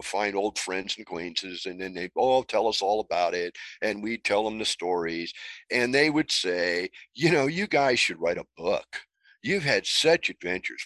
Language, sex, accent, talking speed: English, male, American, 200 wpm